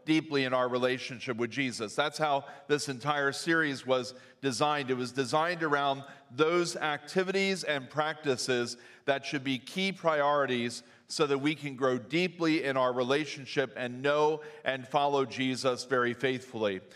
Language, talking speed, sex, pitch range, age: English, 150 wpm, male, 130-155 Hz, 40-59